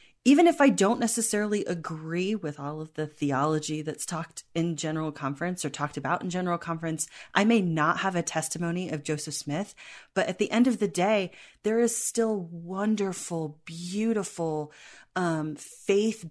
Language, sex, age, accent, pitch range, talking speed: English, female, 30-49, American, 155-195 Hz, 165 wpm